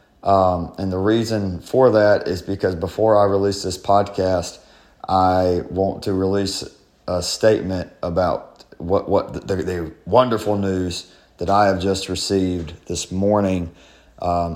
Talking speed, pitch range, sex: 140 wpm, 85-95 Hz, male